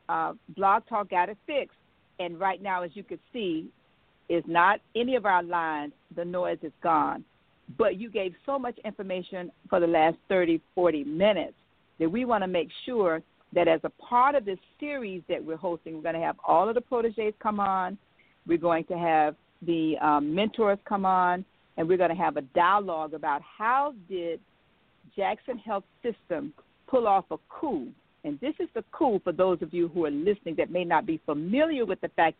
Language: English